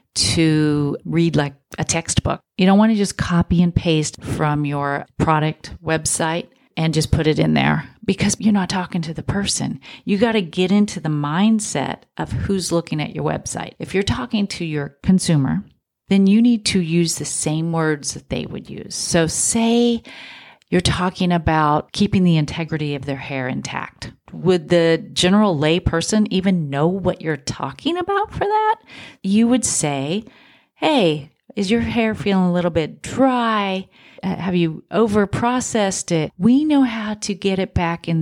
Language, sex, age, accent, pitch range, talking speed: English, female, 40-59, American, 155-205 Hz, 175 wpm